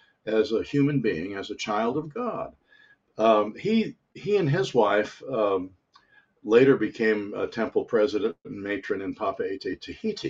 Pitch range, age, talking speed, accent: 105-175 Hz, 60-79, 150 wpm, American